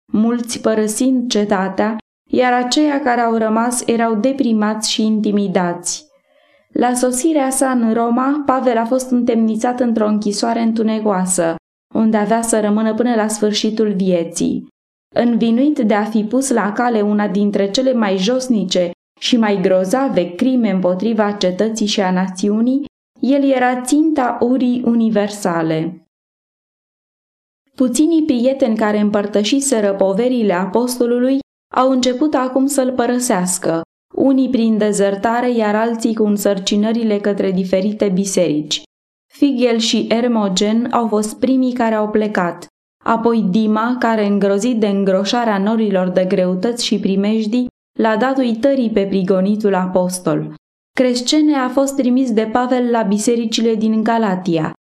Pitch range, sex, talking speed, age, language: 205-250 Hz, female, 125 wpm, 20-39, Romanian